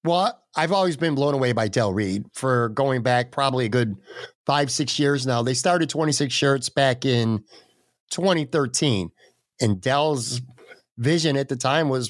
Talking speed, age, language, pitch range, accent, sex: 165 wpm, 50-69, English, 125-155 Hz, American, male